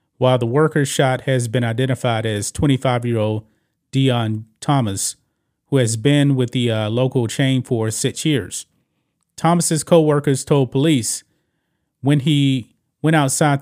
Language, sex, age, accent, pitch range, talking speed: English, male, 30-49, American, 120-150 Hz, 140 wpm